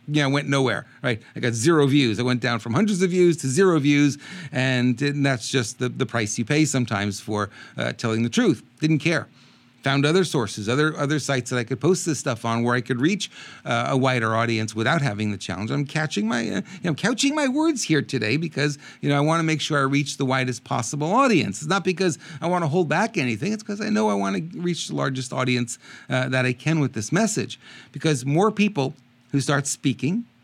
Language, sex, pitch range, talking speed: English, male, 125-170 Hz, 240 wpm